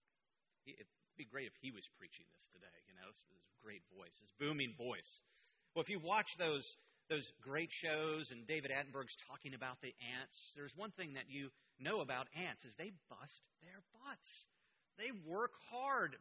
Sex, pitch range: male, 155-225 Hz